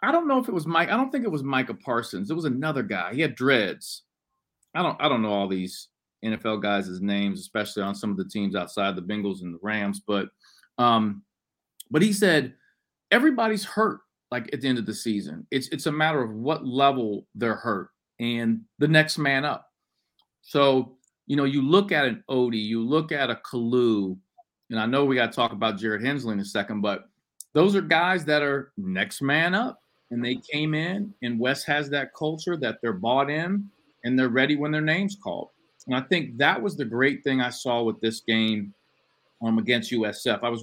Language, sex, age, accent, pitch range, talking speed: English, male, 40-59, American, 110-165 Hz, 215 wpm